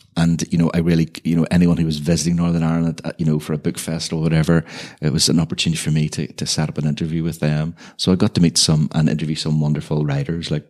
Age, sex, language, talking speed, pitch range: 30-49, male, English, 270 wpm, 80-90 Hz